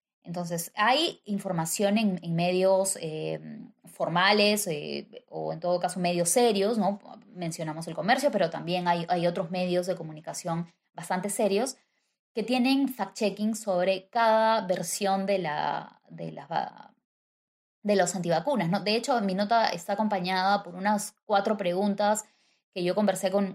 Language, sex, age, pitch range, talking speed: Spanish, female, 20-39, 170-210 Hz, 145 wpm